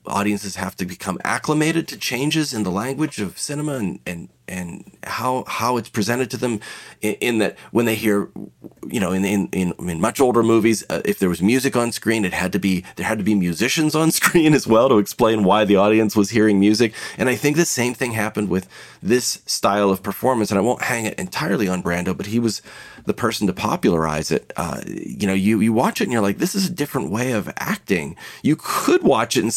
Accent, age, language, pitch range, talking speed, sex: American, 30-49, English, 100-125 Hz, 235 wpm, male